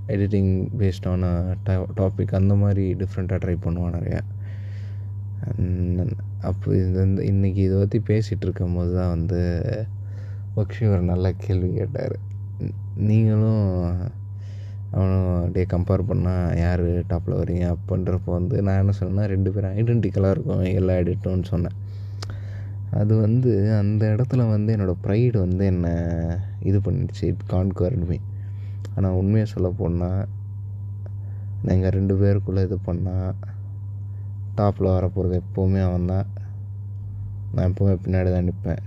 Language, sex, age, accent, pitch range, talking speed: Tamil, male, 20-39, native, 95-100 Hz, 115 wpm